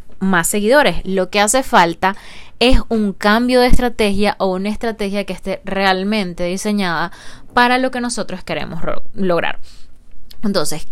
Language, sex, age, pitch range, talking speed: Spanish, female, 20-39, 185-245 Hz, 145 wpm